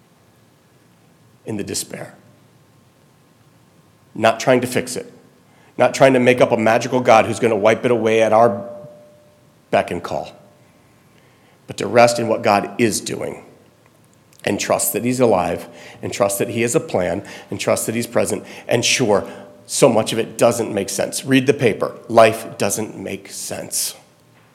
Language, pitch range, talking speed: English, 110-125 Hz, 165 wpm